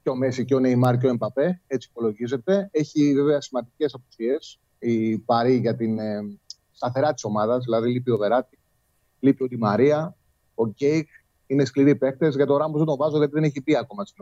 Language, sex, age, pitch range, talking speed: Greek, male, 30-49, 130-170 Hz, 190 wpm